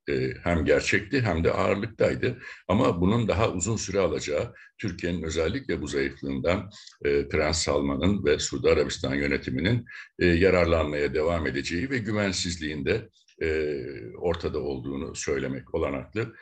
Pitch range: 70-90 Hz